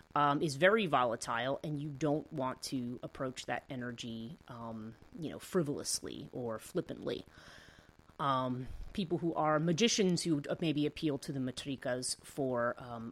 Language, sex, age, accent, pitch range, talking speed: English, female, 30-49, American, 125-165 Hz, 140 wpm